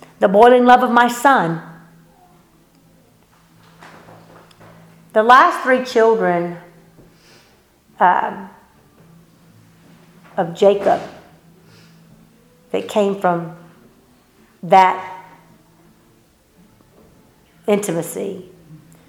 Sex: female